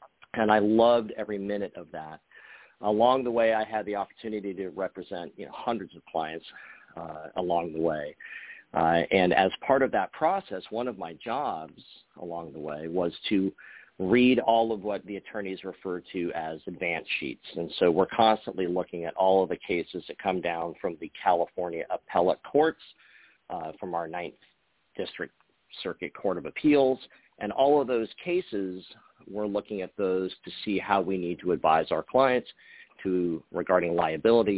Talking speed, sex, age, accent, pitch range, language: 170 wpm, male, 40-59, American, 90-110 Hz, English